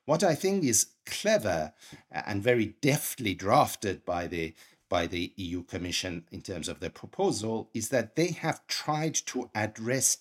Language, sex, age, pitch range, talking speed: English, male, 50-69, 100-130 Hz, 160 wpm